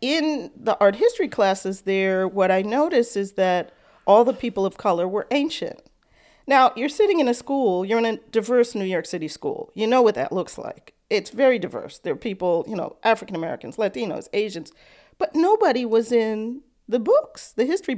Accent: American